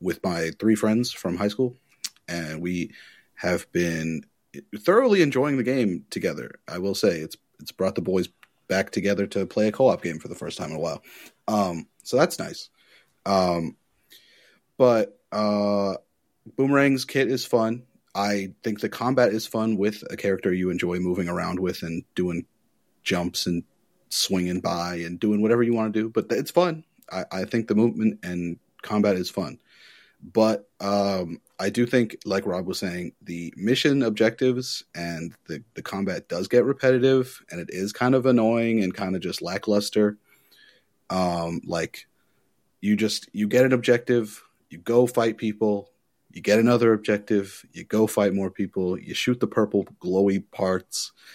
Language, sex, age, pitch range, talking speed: English, male, 30-49, 95-120 Hz, 170 wpm